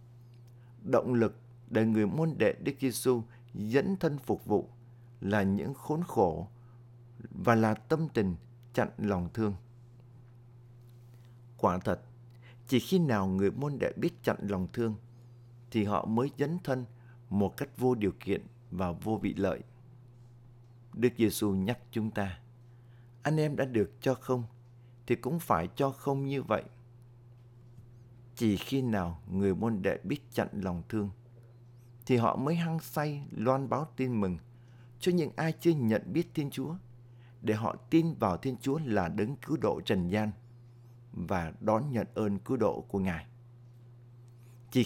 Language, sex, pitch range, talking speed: Vietnamese, male, 110-125 Hz, 155 wpm